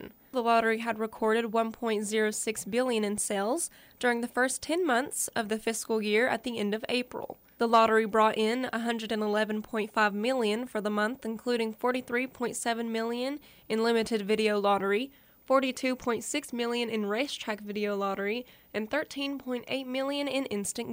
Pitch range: 215-240 Hz